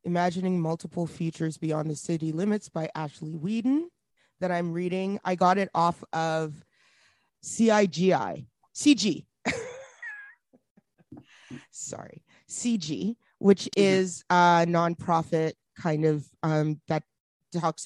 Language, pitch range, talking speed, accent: English, 160-195 Hz, 105 wpm, American